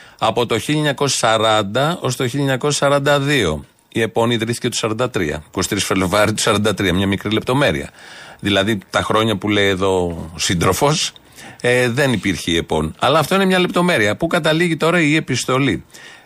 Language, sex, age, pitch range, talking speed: Greek, male, 30-49, 100-145 Hz, 145 wpm